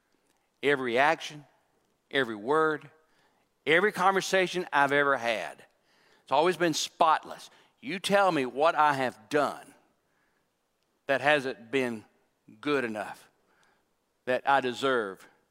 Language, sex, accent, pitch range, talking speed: English, male, American, 135-180 Hz, 110 wpm